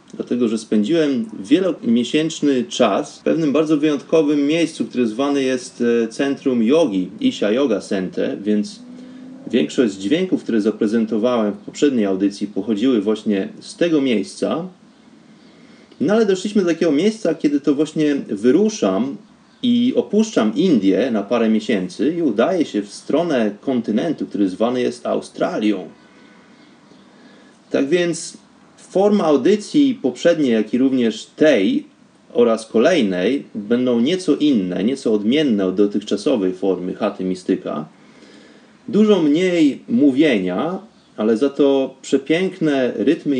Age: 30-49